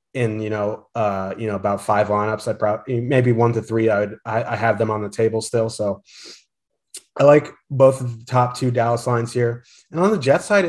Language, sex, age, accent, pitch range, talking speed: English, male, 30-49, American, 110-130 Hz, 225 wpm